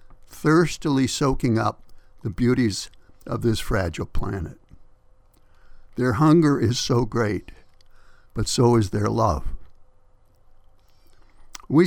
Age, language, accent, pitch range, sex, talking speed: 60-79, English, American, 95-130 Hz, male, 100 wpm